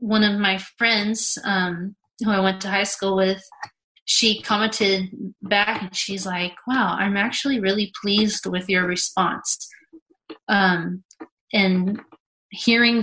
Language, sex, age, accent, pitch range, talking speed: English, female, 30-49, American, 190-235 Hz, 135 wpm